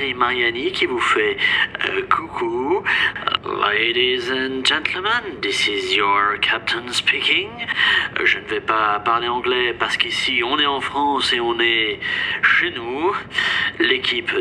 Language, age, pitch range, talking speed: French, 30-49, 150-225 Hz, 135 wpm